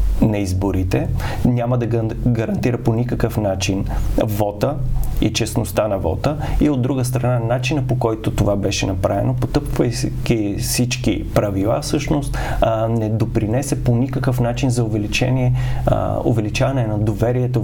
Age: 30-49